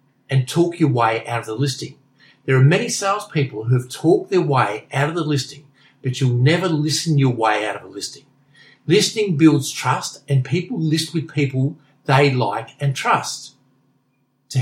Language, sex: English, male